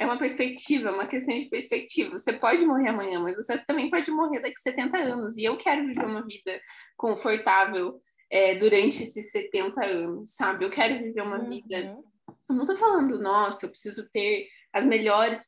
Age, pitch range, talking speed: 20-39, 215-280 Hz, 190 wpm